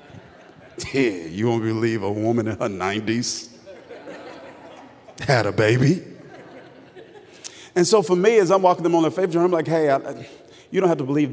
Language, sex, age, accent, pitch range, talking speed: English, male, 40-59, American, 130-180 Hz, 170 wpm